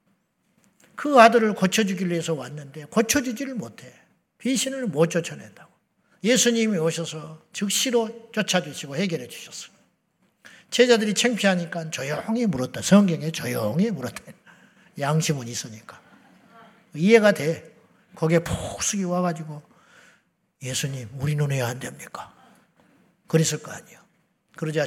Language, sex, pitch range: Korean, male, 160-215 Hz